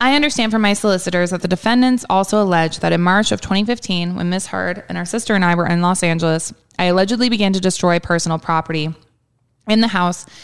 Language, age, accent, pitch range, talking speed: English, 20-39, American, 170-210 Hz, 215 wpm